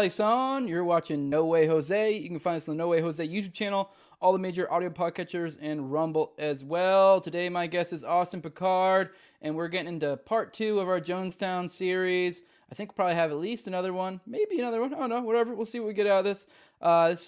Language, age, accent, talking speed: English, 20-39, American, 235 wpm